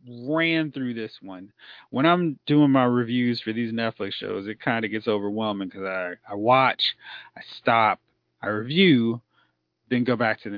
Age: 30-49